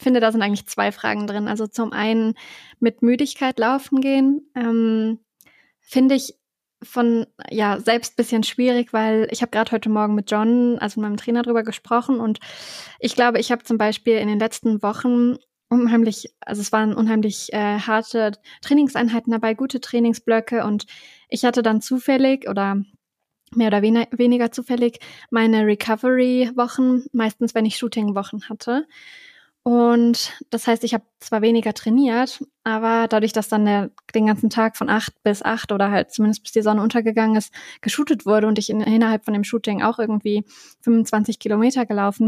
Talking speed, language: 165 wpm, German